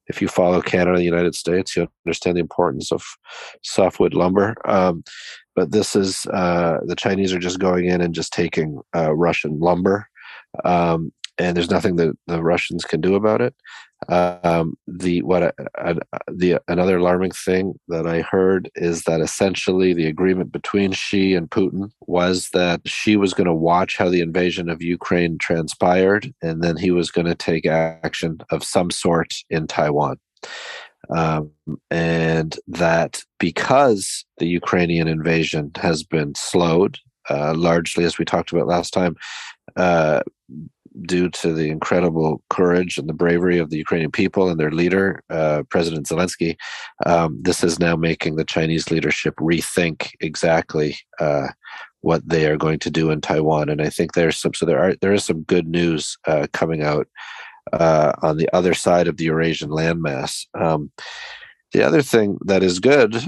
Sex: male